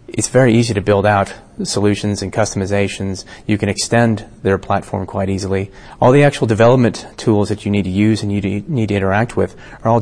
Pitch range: 100-115 Hz